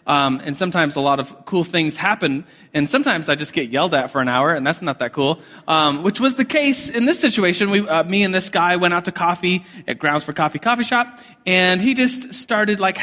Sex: male